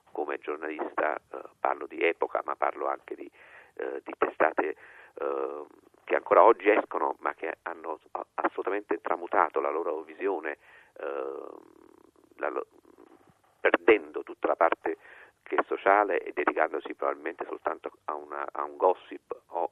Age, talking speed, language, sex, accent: 50-69, 130 wpm, Italian, male, native